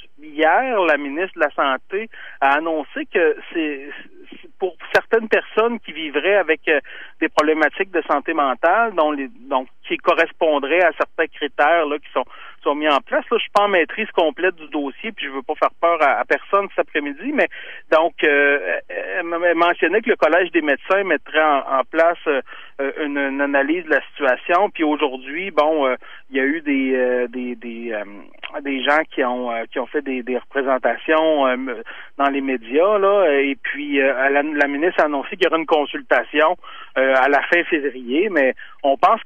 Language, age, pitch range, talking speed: French, 40-59, 140-200 Hz, 195 wpm